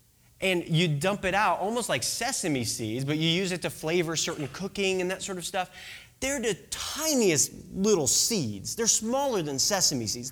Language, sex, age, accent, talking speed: English, male, 20-39, American, 185 wpm